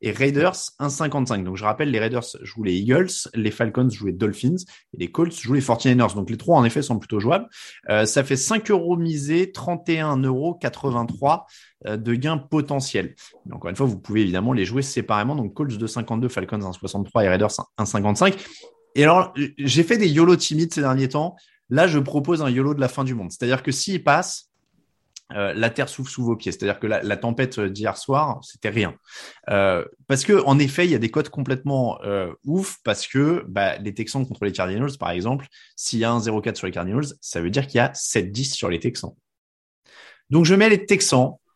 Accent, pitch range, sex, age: French, 115-145 Hz, male, 20-39